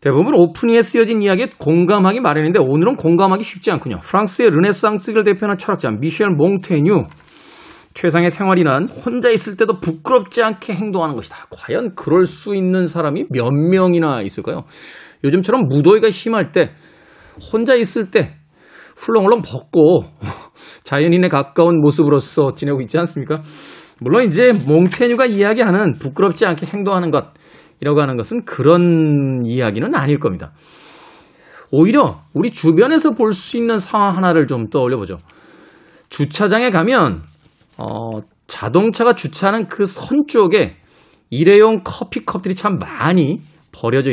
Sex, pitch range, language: male, 145-210 Hz, Korean